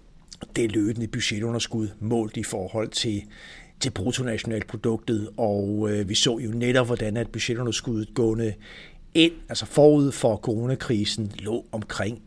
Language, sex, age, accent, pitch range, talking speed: Danish, male, 60-79, native, 110-125 Hz, 125 wpm